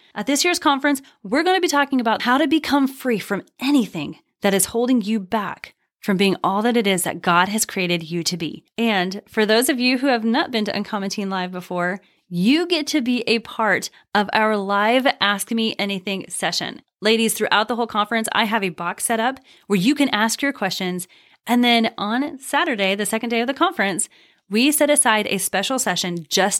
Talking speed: 210 wpm